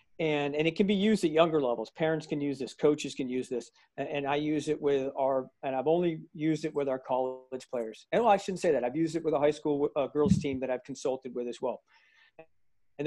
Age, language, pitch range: 40-59, English, 130-160 Hz